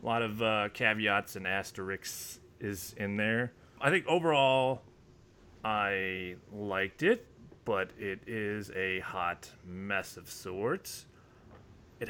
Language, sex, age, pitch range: English, male, 30-49, 100-120 Hz